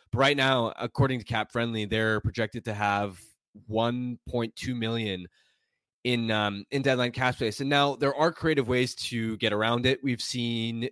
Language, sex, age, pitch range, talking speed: English, male, 20-39, 110-125 Hz, 170 wpm